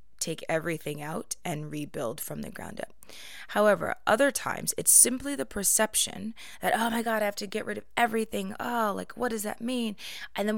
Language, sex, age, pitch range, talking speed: English, female, 20-39, 160-210 Hz, 200 wpm